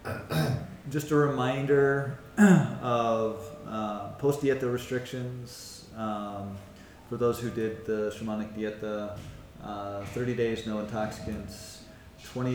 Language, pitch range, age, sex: English, 105-125 Hz, 30-49, male